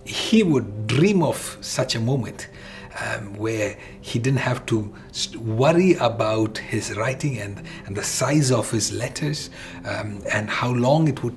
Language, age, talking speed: English, 60-79, 165 wpm